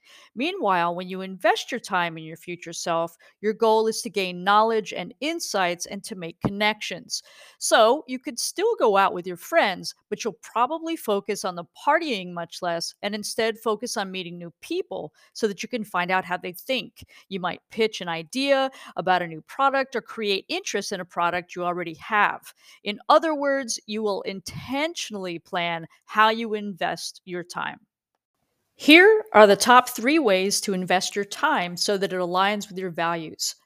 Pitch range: 180-245 Hz